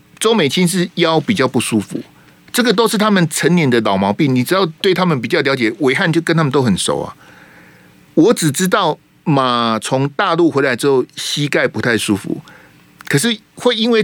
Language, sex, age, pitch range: Chinese, male, 50-69, 130-180 Hz